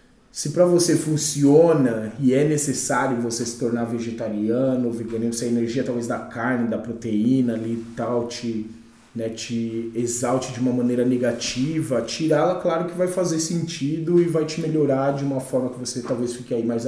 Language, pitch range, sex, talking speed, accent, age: Portuguese, 125-160 Hz, male, 175 wpm, Brazilian, 20-39